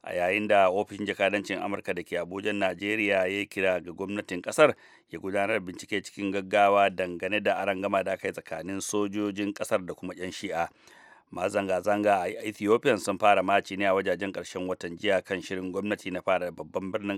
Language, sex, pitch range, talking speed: English, male, 95-105 Hz, 150 wpm